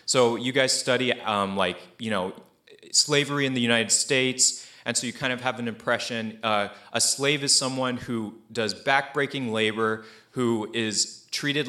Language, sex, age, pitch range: English, male, 30-49, 115-150 Hz